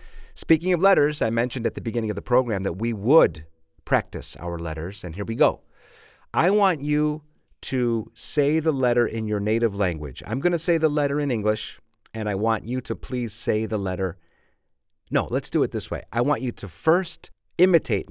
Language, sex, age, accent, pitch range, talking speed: English, male, 40-59, American, 80-120 Hz, 200 wpm